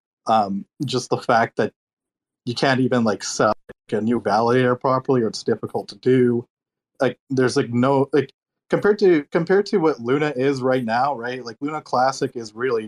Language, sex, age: English, male, 20-39